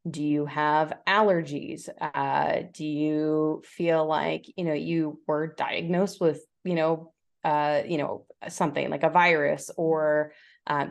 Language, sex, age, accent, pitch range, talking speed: English, female, 20-39, American, 150-180 Hz, 145 wpm